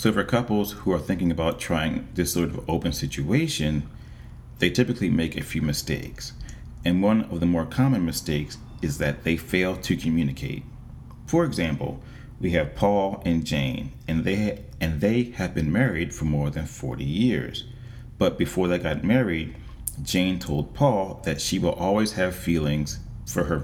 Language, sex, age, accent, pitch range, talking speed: English, male, 40-59, American, 80-100 Hz, 170 wpm